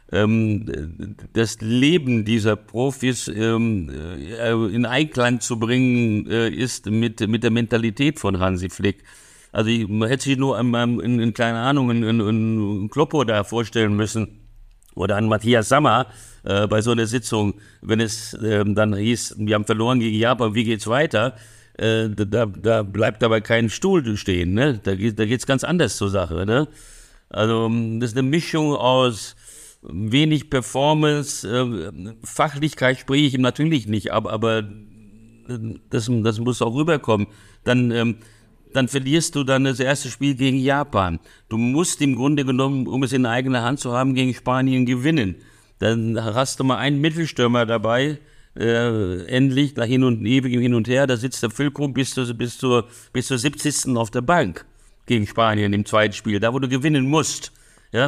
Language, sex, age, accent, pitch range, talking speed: German, male, 60-79, German, 110-135 Hz, 160 wpm